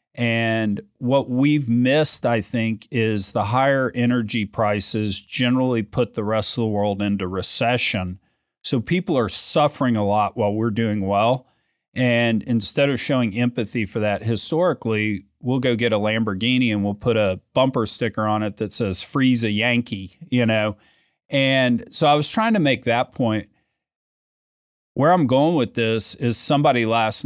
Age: 40-59